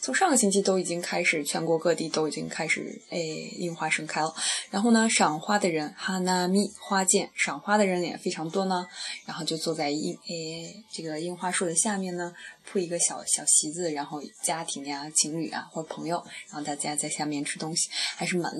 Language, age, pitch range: Chinese, 20-39, 160-210 Hz